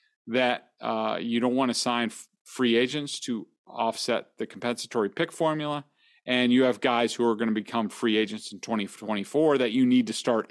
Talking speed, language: 190 wpm, English